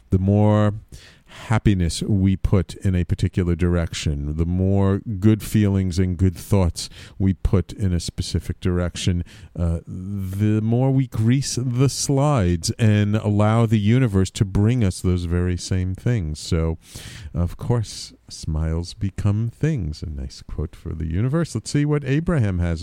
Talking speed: 150 wpm